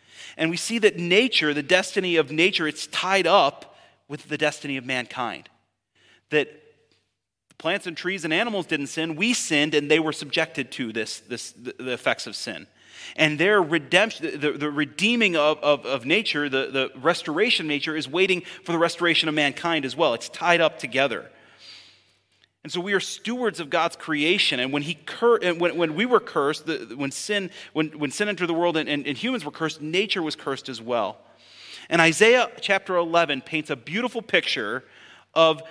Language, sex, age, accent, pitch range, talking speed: English, male, 30-49, American, 145-180 Hz, 190 wpm